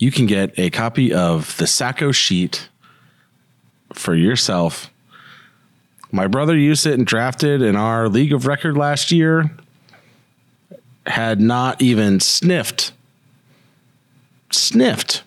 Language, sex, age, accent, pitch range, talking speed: English, male, 40-59, American, 95-140 Hz, 115 wpm